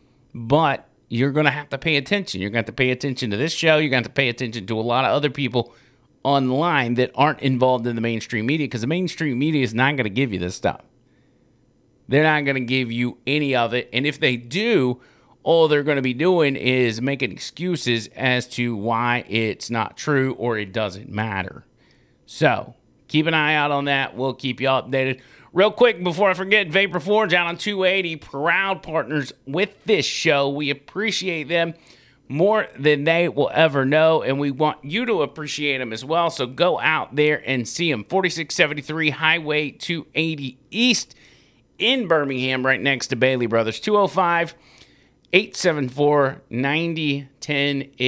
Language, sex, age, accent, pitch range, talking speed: English, male, 30-49, American, 125-160 Hz, 180 wpm